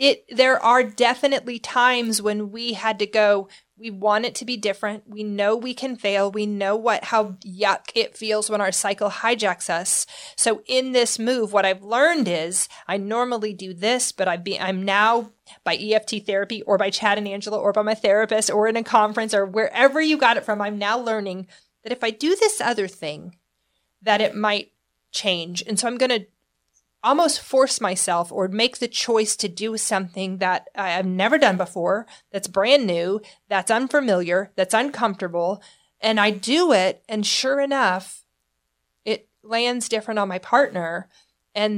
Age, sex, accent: 30-49, female, American